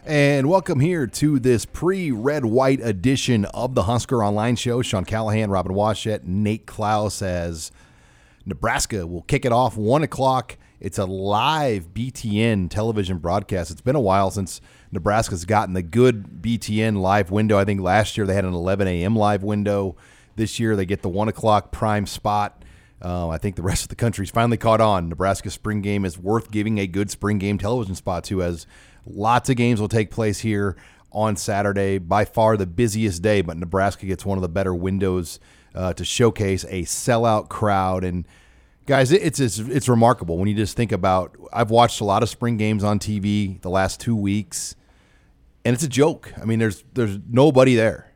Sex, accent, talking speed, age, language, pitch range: male, American, 190 wpm, 30-49, English, 95-115 Hz